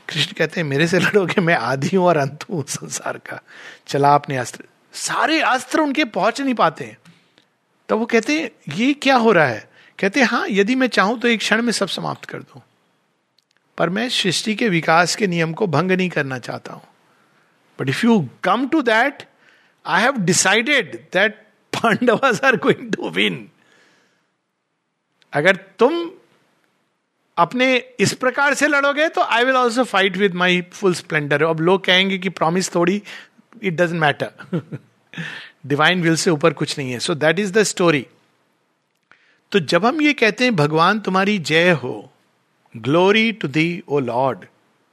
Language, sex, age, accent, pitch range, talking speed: Hindi, male, 60-79, native, 160-225 Hz, 150 wpm